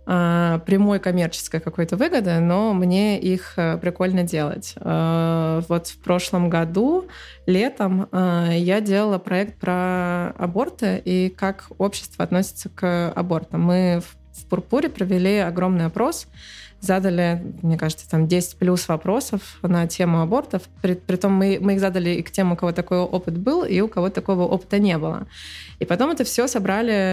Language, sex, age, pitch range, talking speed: Russian, female, 20-39, 165-195 Hz, 150 wpm